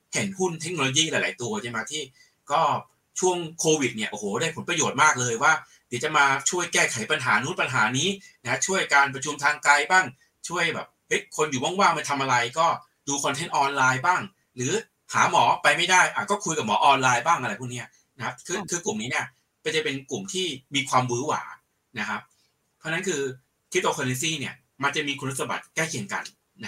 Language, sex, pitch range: Thai, male, 130-175 Hz